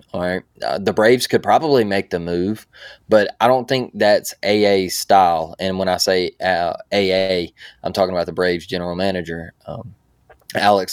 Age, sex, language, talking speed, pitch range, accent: 20-39, male, English, 175 wpm, 90-110 Hz, American